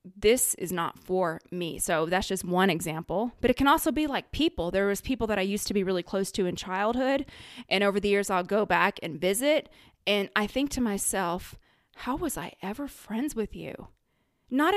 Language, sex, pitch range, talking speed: English, female, 185-220 Hz, 210 wpm